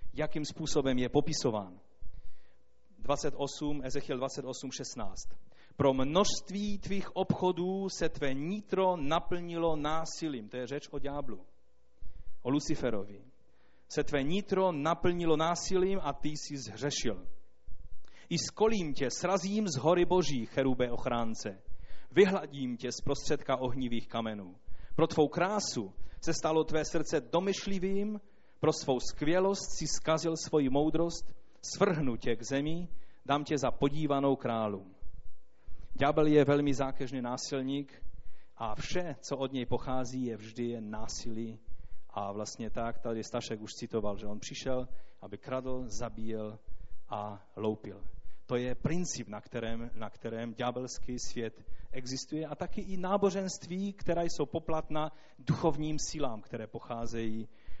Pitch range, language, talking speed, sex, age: 115-160 Hz, Czech, 130 wpm, male, 30-49